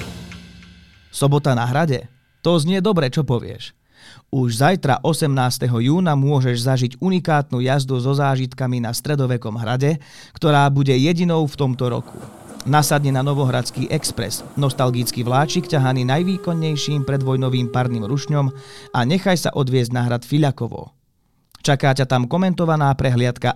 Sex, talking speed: male, 125 wpm